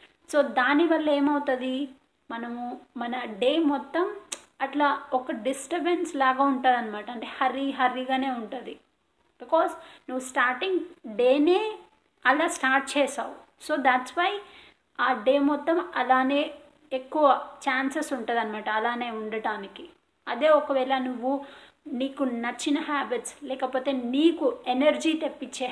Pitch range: 250-290 Hz